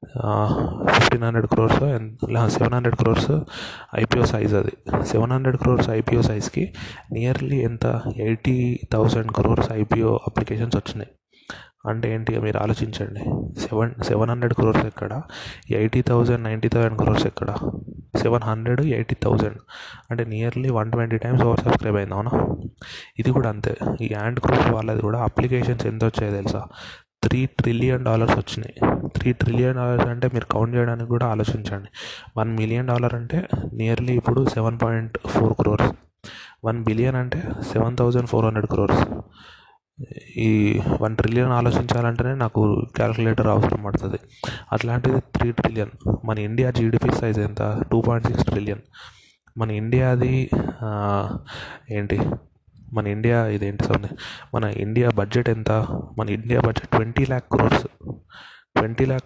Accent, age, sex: native, 20-39, male